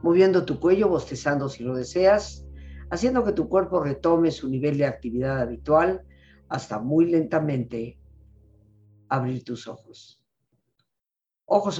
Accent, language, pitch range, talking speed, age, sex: Mexican, Spanish, 140-180 Hz, 120 wpm, 50-69, female